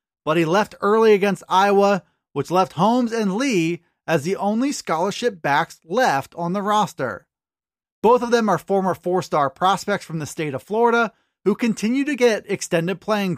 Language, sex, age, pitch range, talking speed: English, male, 20-39, 175-230 Hz, 170 wpm